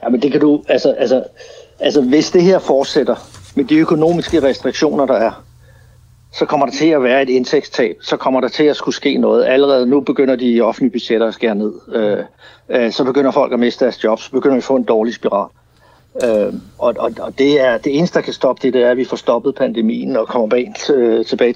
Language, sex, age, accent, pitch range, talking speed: Danish, male, 60-79, native, 120-145 Hz, 230 wpm